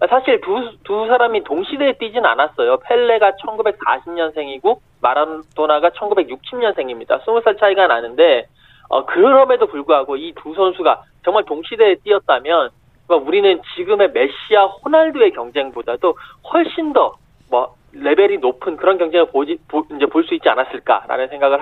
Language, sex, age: Korean, male, 20-39